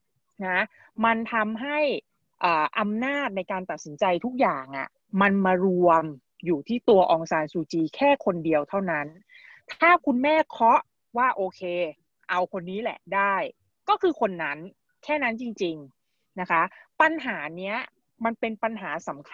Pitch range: 170-225 Hz